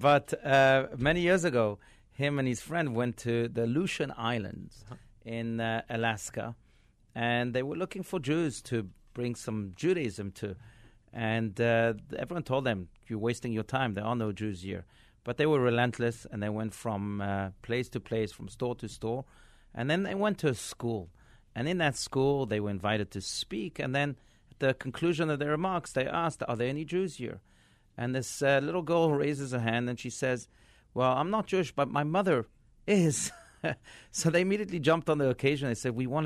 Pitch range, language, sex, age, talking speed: 115-145 Hz, English, male, 40-59, 195 wpm